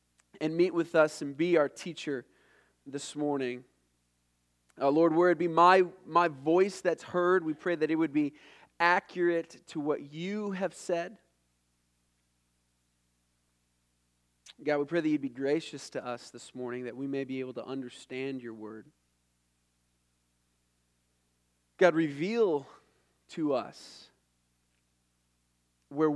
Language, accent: English, American